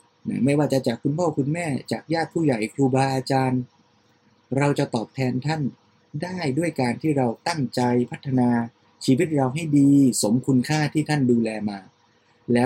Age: 20-39